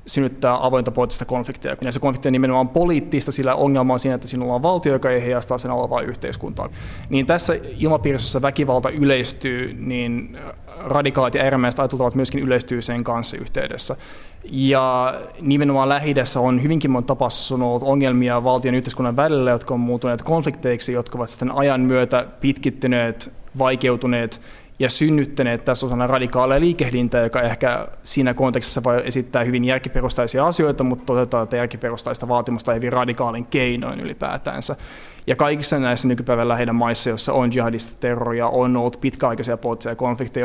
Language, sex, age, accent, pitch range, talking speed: Finnish, male, 20-39, native, 120-135 Hz, 145 wpm